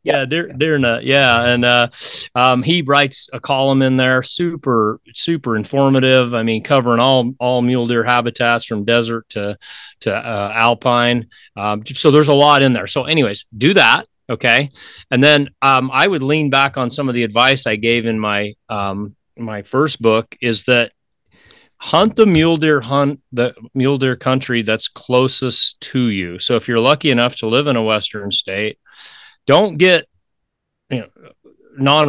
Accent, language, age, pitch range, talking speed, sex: American, English, 30-49, 115-140 Hz, 170 wpm, male